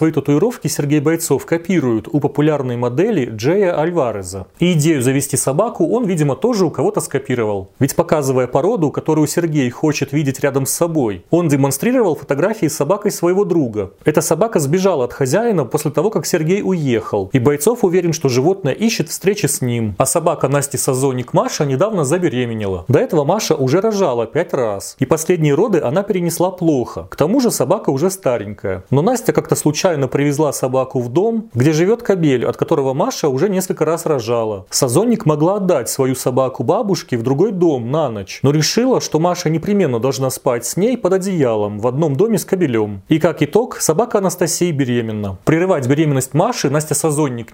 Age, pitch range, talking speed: 30-49, 130-175 Hz, 170 wpm